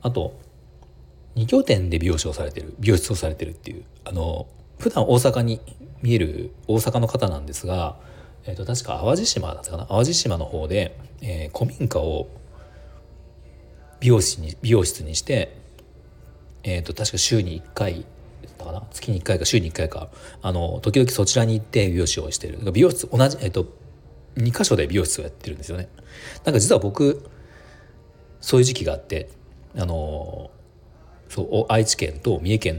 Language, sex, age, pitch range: Japanese, male, 40-59, 80-115 Hz